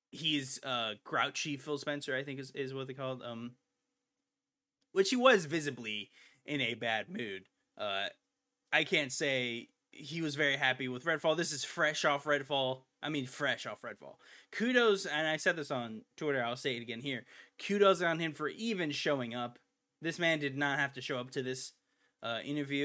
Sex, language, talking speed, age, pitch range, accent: male, English, 190 wpm, 20-39, 130-165 Hz, American